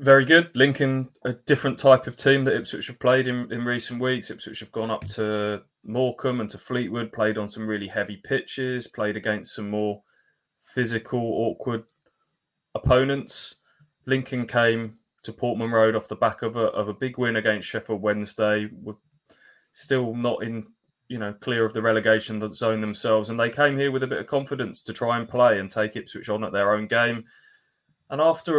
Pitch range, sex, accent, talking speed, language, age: 105-125 Hz, male, British, 190 wpm, English, 20-39